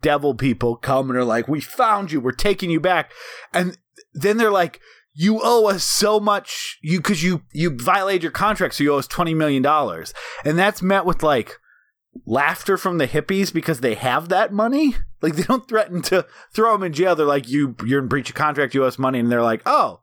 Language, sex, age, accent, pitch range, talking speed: English, male, 30-49, American, 140-195 Hz, 225 wpm